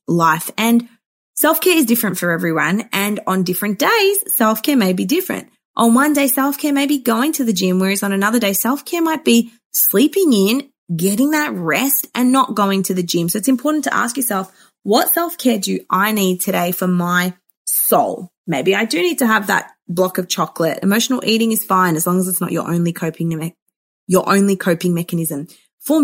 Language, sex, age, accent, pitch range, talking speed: English, female, 20-39, Australian, 180-235 Hz, 205 wpm